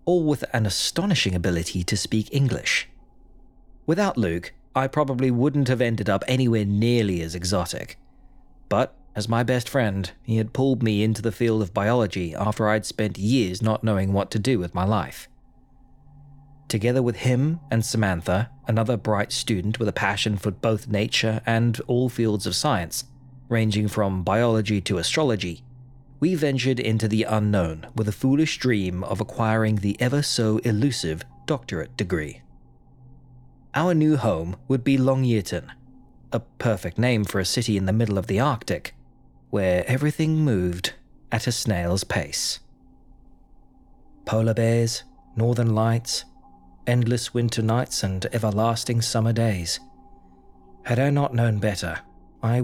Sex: male